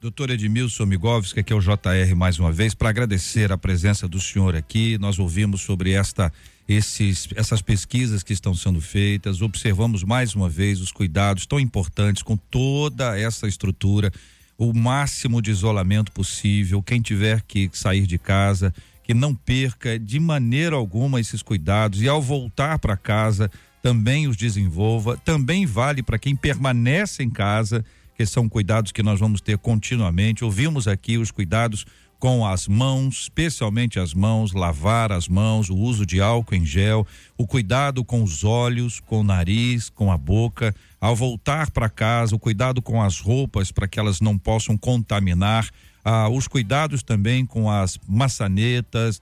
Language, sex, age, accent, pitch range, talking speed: Portuguese, male, 50-69, Brazilian, 100-120 Hz, 165 wpm